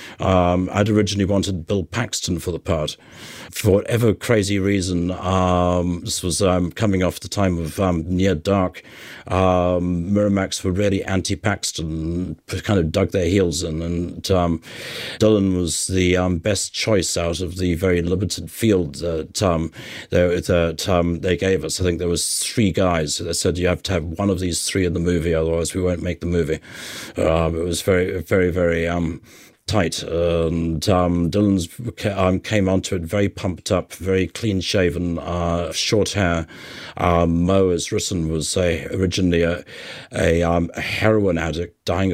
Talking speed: 170 wpm